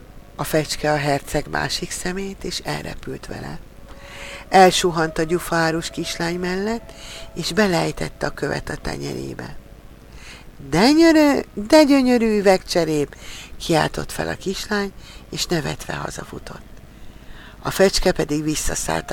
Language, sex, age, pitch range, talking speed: Hungarian, female, 50-69, 135-180 Hz, 110 wpm